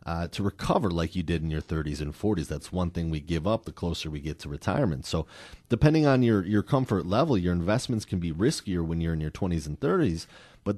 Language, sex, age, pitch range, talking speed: English, male, 30-49, 85-105 Hz, 240 wpm